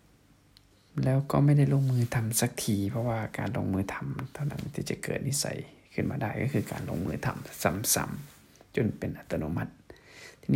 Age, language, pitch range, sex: 20-39, Thai, 110-140 Hz, male